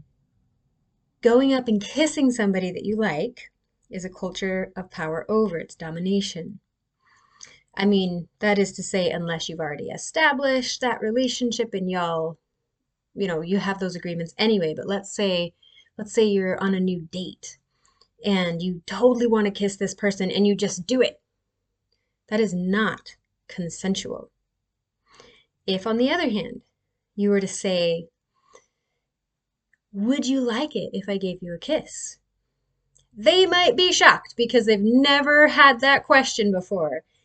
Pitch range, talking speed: 185-255 Hz, 150 wpm